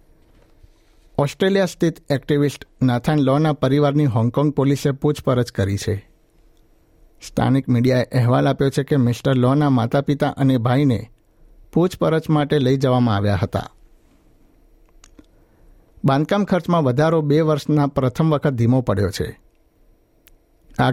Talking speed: 115 wpm